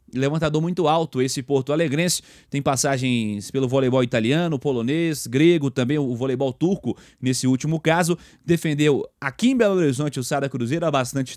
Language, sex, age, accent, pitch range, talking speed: Portuguese, male, 30-49, Brazilian, 140-175 Hz, 160 wpm